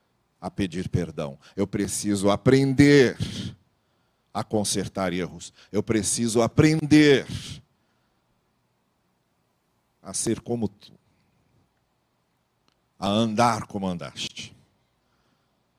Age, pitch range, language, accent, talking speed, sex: 50-69, 105-130 Hz, Portuguese, Brazilian, 75 wpm, male